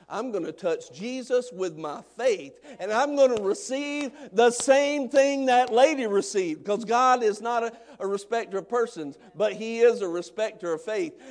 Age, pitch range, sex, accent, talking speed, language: 50-69, 170-230 Hz, male, American, 185 wpm, English